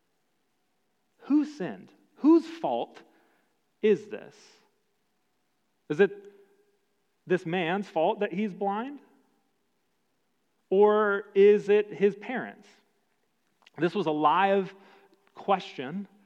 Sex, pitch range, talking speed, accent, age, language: male, 155-215 Hz, 90 wpm, American, 30-49, English